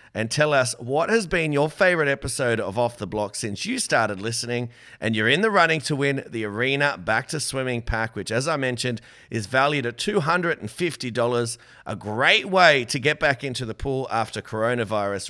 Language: English